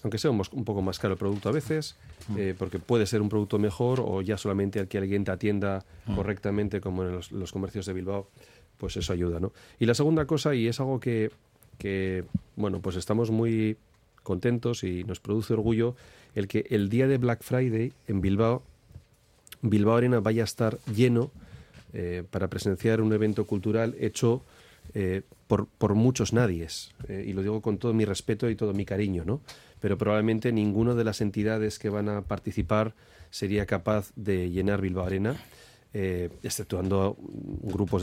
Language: Spanish